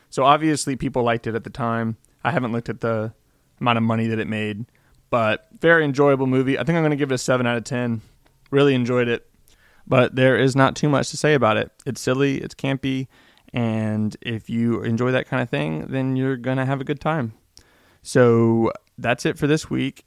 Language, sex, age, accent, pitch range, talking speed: English, male, 20-39, American, 110-130 Hz, 220 wpm